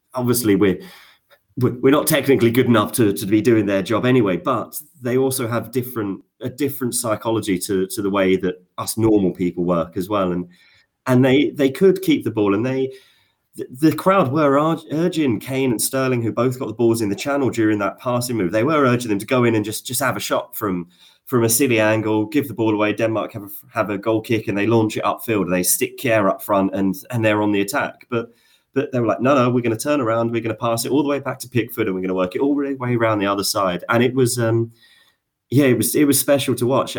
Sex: male